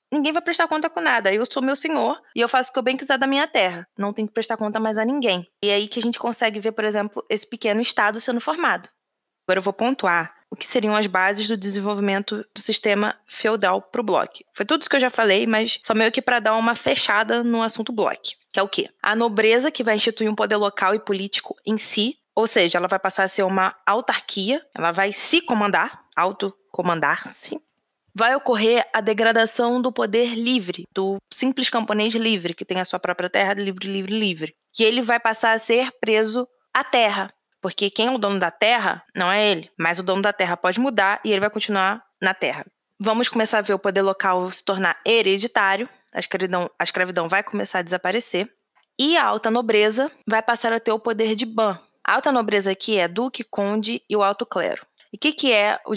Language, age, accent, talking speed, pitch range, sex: Portuguese, 20-39, Brazilian, 220 wpm, 195-235 Hz, female